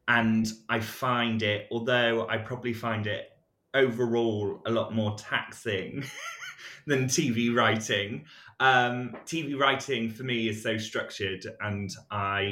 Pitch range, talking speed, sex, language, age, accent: 95-120 Hz, 130 wpm, male, English, 20-39, British